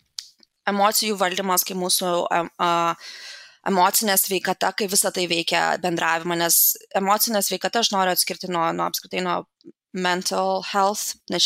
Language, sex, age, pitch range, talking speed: English, female, 20-39, 185-215 Hz, 130 wpm